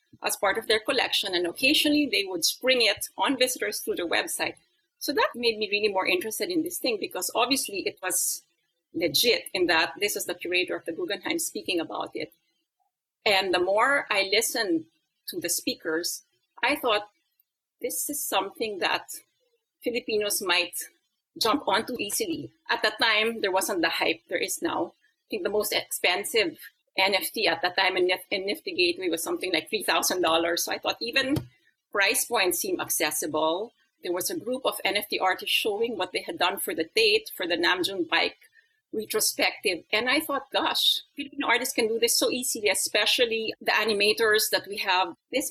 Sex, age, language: female, 40-59, English